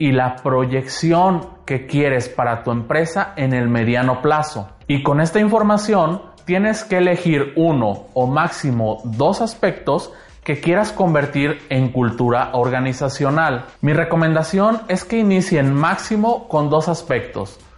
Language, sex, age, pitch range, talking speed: Spanish, male, 30-49, 125-165 Hz, 130 wpm